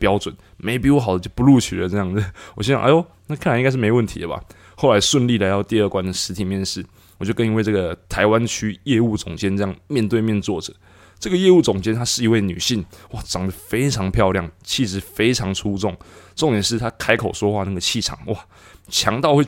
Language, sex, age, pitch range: Chinese, male, 20-39, 95-115 Hz